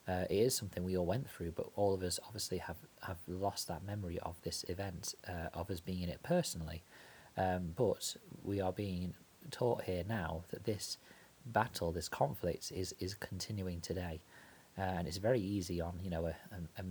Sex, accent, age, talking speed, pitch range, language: male, British, 30-49, 200 wpm, 85-100 Hz, English